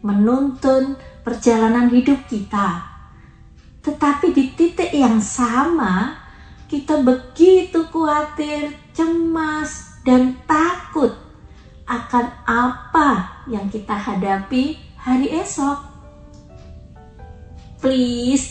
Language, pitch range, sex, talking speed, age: Indonesian, 200-305 Hz, female, 75 wpm, 30-49